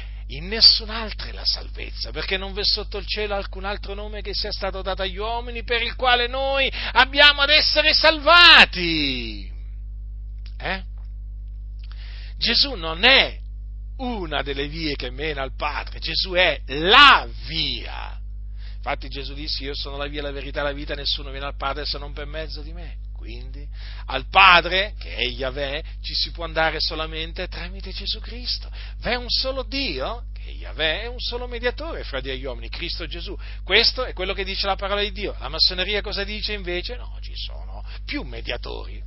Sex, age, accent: male, 40-59, native